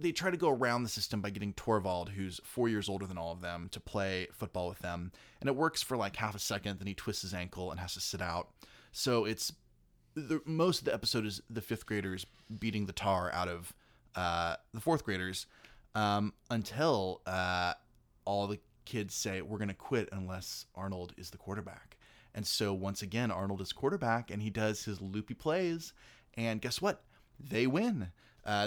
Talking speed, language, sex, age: 200 wpm, English, male, 20-39